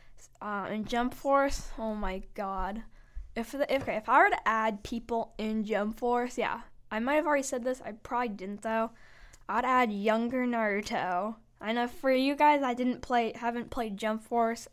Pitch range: 205-240 Hz